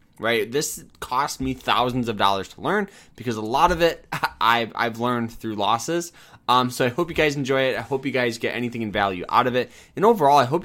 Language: English